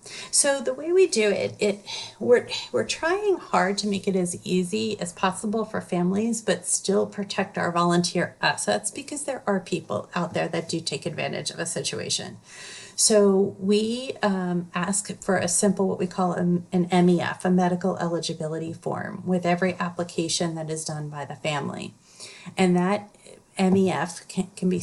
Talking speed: 170 wpm